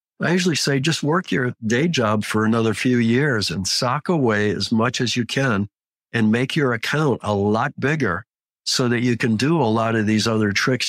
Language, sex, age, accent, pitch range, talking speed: English, male, 60-79, American, 105-120 Hz, 210 wpm